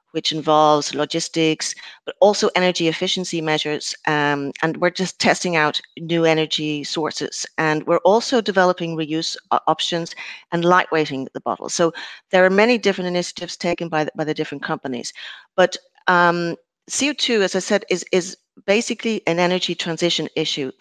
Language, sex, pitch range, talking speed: English, female, 155-185 Hz, 155 wpm